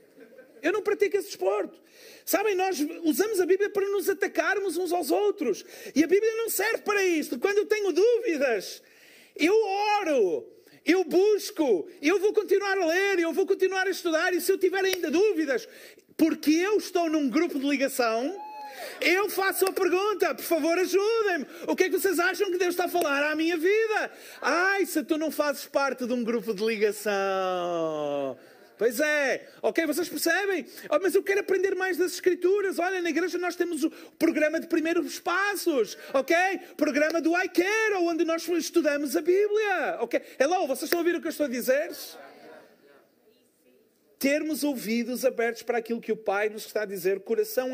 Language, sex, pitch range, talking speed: Portuguese, male, 260-390 Hz, 180 wpm